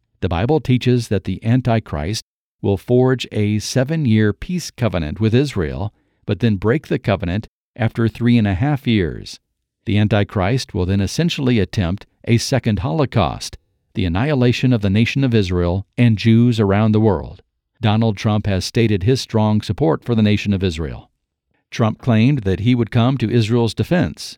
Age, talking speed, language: 50-69, 165 wpm, English